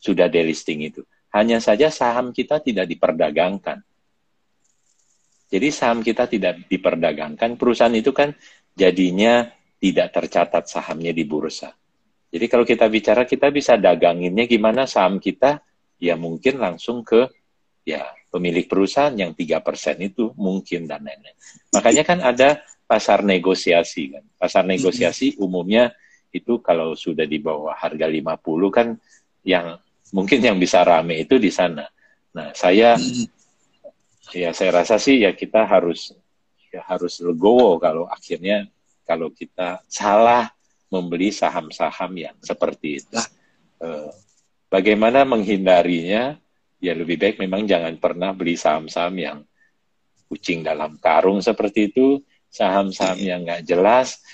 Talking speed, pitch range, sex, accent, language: 125 wpm, 85-115 Hz, male, native, Indonesian